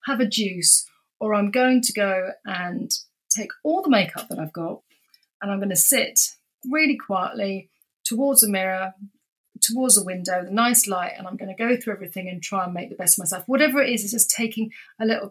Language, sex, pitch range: English, female, 185-240 Hz